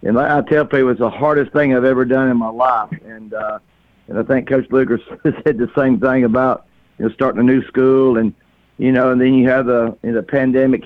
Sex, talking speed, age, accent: male, 245 wpm, 60-79, American